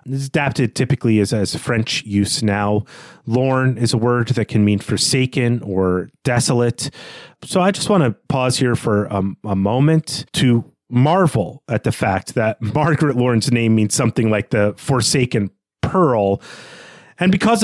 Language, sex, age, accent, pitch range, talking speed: English, male, 30-49, American, 110-150 Hz, 155 wpm